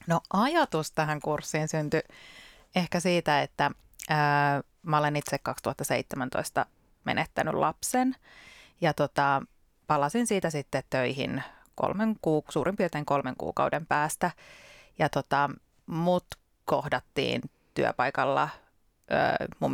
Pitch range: 145-175 Hz